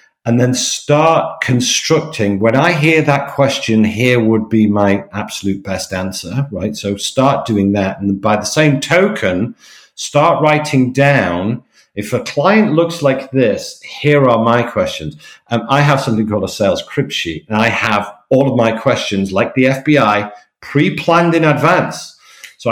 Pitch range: 105-140 Hz